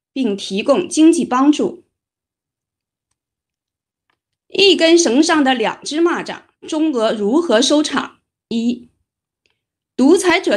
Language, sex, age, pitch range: Chinese, female, 30-49, 230-325 Hz